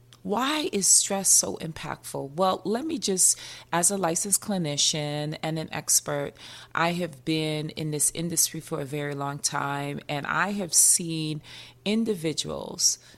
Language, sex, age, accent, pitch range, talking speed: English, female, 30-49, American, 150-180 Hz, 145 wpm